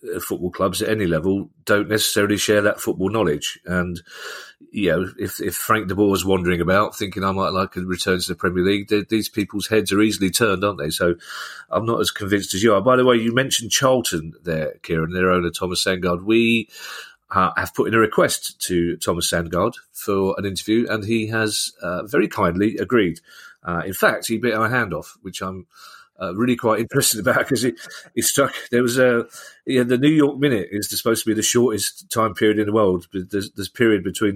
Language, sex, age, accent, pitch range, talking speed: English, male, 40-59, British, 95-115 Hz, 215 wpm